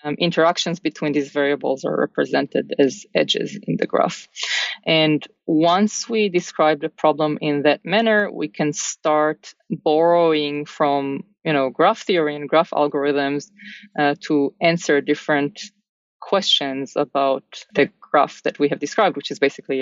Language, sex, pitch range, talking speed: English, female, 145-180 Hz, 145 wpm